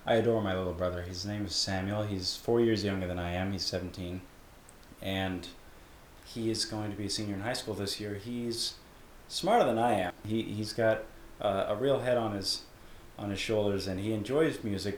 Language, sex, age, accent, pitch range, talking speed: English, male, 30-49, American, 100-120 Hz, 210 wpm